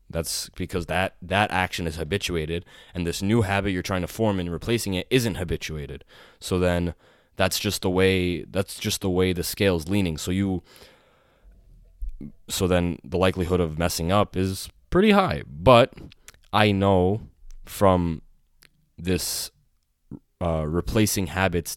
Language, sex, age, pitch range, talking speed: English, male, 20-39, 85-105 Hz, 150 wpm